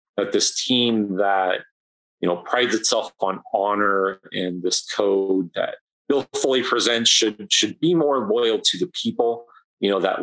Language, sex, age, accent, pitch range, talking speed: English, male, 30-49, American, 95-135 Hz, 165 wpm